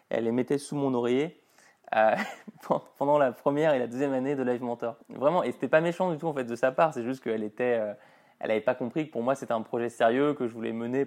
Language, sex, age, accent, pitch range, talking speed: French, male, 20-39, French, 115-145 Hz, 260 wpm